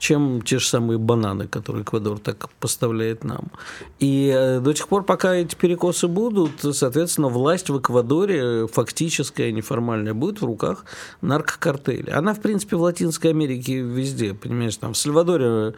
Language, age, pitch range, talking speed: Russian, 50-69, 115-160 Hz, 150 wpm